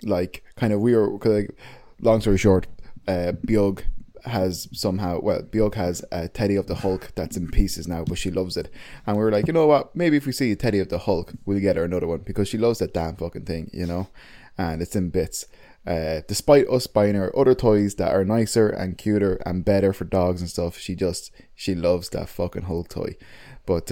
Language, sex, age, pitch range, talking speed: English, male, 20-39, 90-120 Hz, 225 wpm